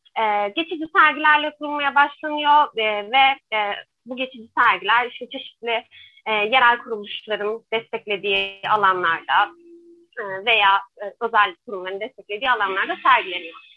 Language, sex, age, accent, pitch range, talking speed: Turkish, female, 30-49, native, 215-295 Hz, 115 wpm